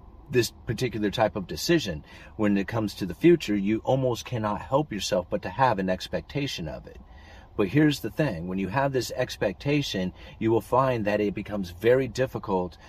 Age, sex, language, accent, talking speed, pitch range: 30-49, male, English, American, 185 wpm, 90-115 Hz